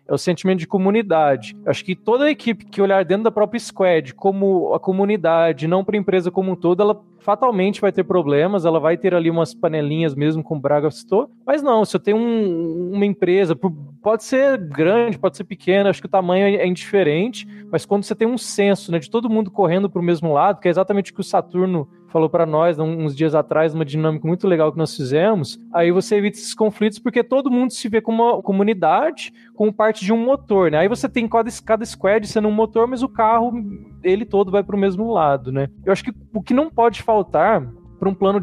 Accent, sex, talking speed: Brazilian, male, 230 wpm